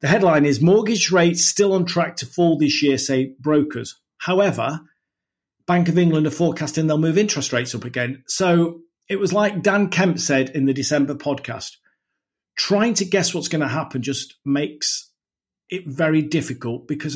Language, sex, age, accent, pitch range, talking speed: English, male, 50-69, British, 140-180 Hz, 175 wpm